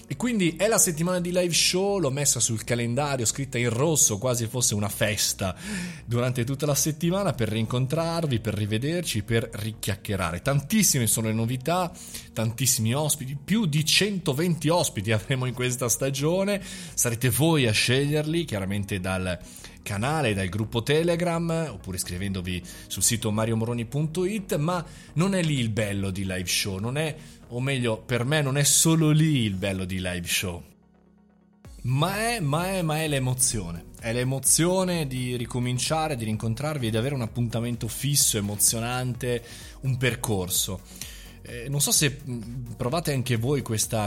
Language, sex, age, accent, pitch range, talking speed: Italian, male, 30-49, native, 110-150 Hz, 150 wpm